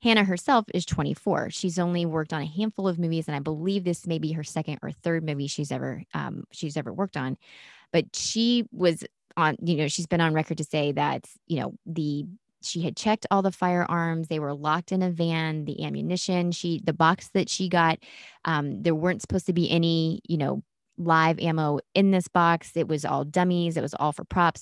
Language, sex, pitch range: English, female, 150-180 Hz